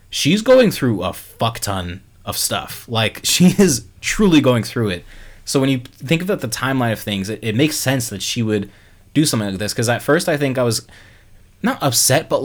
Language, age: English, 20-39